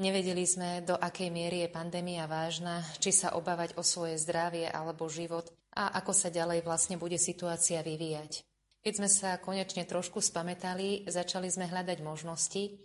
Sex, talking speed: female, 160 wpm